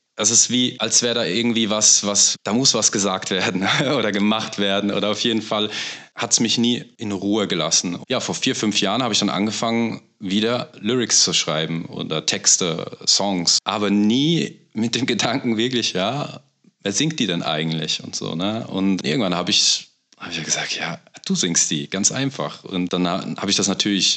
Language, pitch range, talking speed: German, 90-115 Hz, 195 wpm